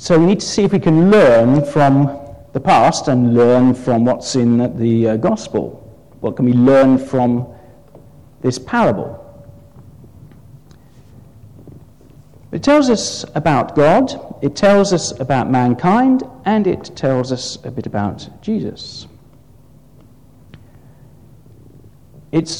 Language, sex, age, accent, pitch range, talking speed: English, male, 50-69, British, 125-165 Hz, 120 wpm